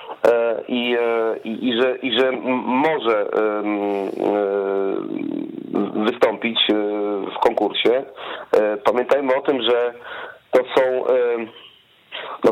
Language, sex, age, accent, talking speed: Polish, male, 40-59, native, 95 wpm